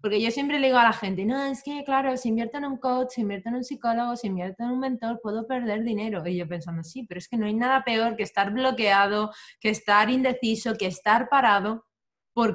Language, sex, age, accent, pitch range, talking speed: Spanish, female, 20-39, Spanish, 195-250 Hz, 245 wpm